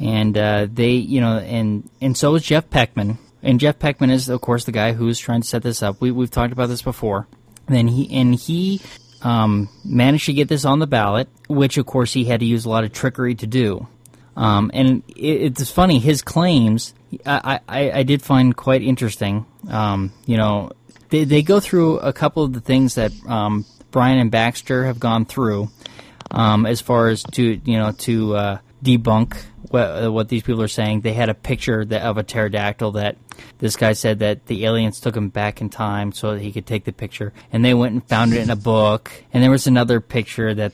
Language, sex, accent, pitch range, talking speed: English, male, American, 110-135 Hz, 220 wpm